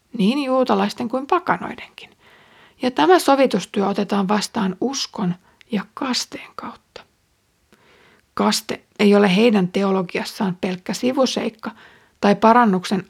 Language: Finnish